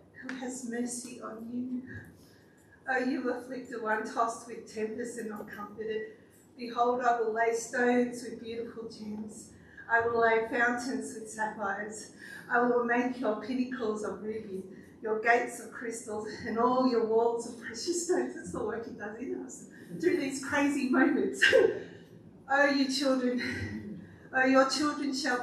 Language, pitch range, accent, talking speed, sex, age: English, 230-265 Hz, Australian, 155 wpm, female, 40-59